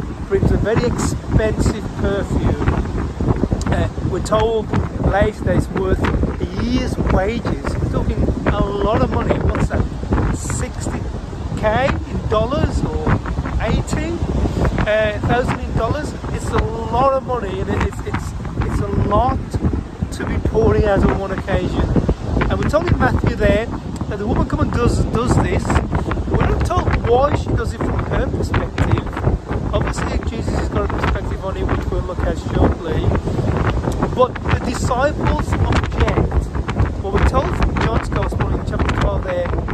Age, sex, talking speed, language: 40-59, male, 150 wpm, English